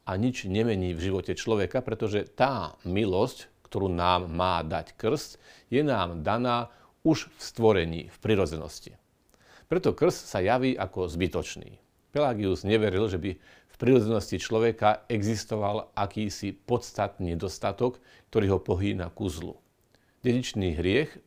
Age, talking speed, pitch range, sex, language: 40-59, 130 wpm, 90-115 Hz, male, Slovak